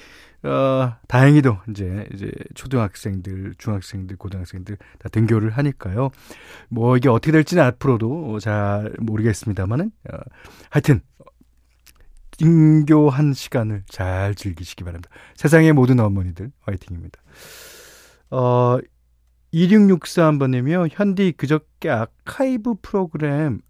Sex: male